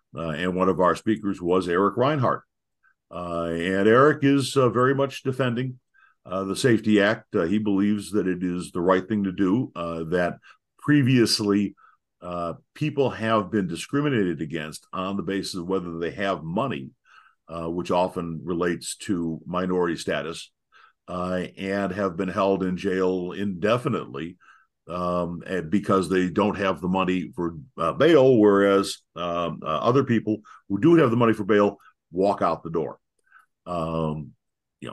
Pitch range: 85-105 Hz